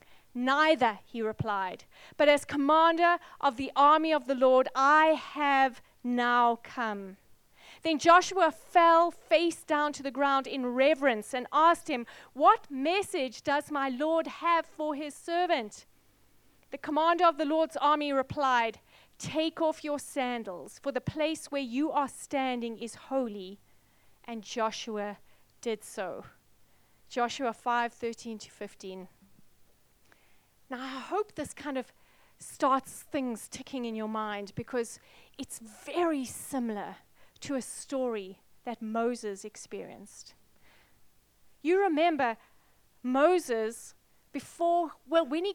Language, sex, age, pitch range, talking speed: English, female, 30-49, 235-305 Hz, 125 wpm